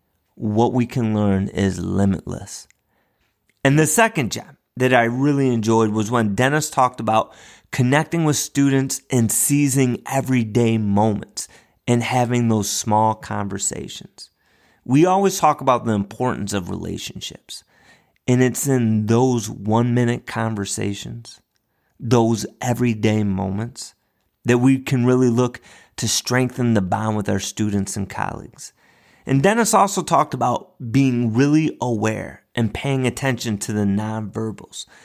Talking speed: 130 wpm